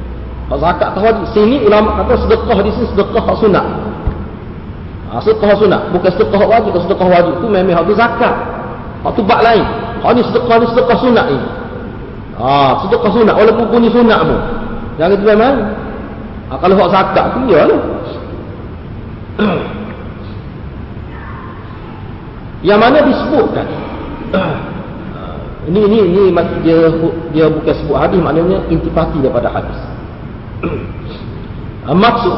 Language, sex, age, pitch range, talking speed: Malay, male, 40-59, 155-230 Hz, 135 wpm